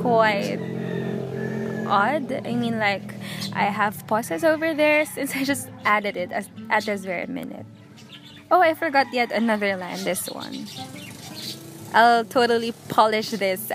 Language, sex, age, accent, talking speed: English, female, 20-39, Filipino, 135 wpm